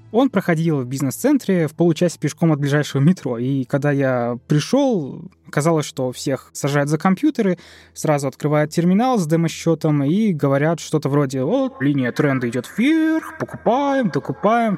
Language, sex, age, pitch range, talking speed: Russian, male, 20-39, 135-175 Hz, 145 wpm